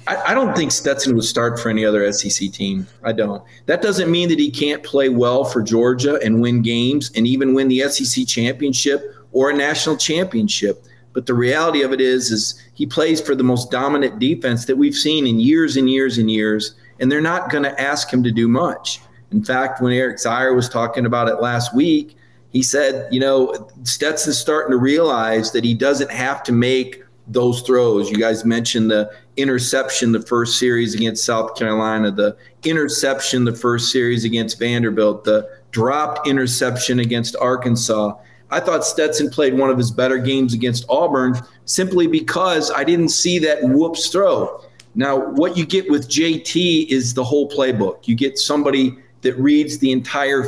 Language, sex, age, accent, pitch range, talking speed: English, male, 40-59, American, 120-145 Hz, 185 wpm